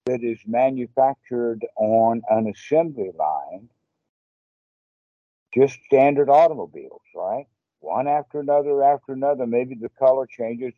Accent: American